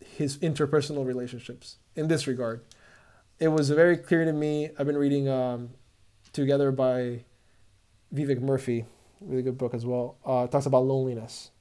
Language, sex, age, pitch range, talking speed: English, male, 20-39, 125-160 Hz, 150 wpm